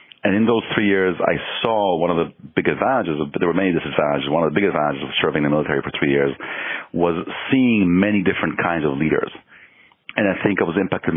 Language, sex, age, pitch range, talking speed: English, male, 40-59, 75-90 Hz, 230 wpm